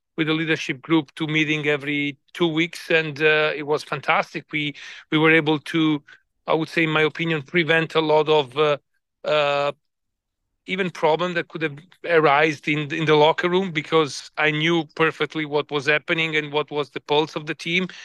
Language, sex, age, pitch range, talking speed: English, male, 40-59, 150-165 Hz, 190 wpm